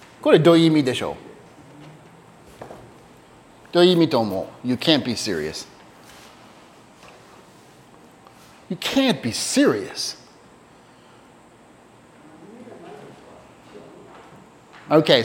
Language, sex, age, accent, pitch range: Japanese, male, 30-49, American, 125-165 Hz